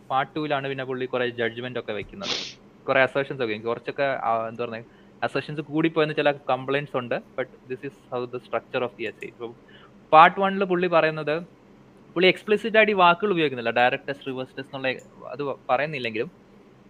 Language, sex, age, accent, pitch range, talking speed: Malayalam, male, 20-39, native, 125-155 Hz, 150 wpm